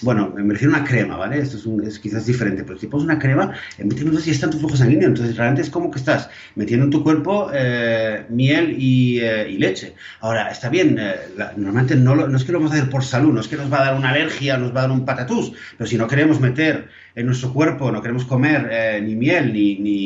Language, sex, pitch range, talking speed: Spanish, male, 110-155 Hz, 265 wpm